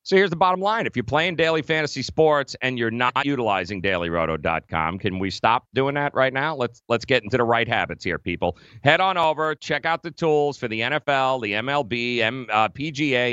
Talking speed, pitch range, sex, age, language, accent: 210 wpm, 110-145 Hz, male, 40-59, English, American